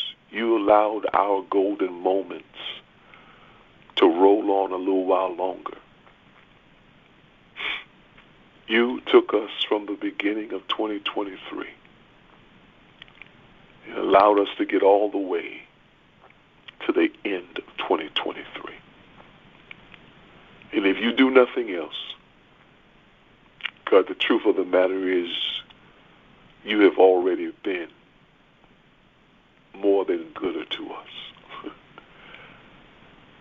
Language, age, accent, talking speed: English, 60-79, American, 100 wpm